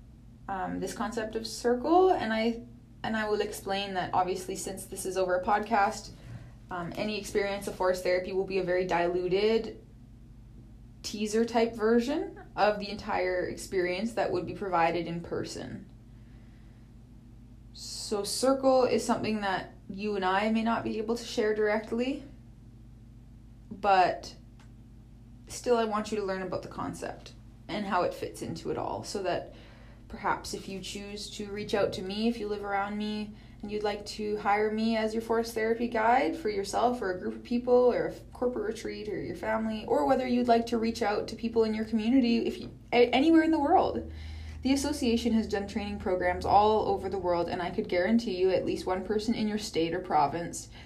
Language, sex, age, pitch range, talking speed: English, female, 20-39, 175-225 Hz, 190 wpm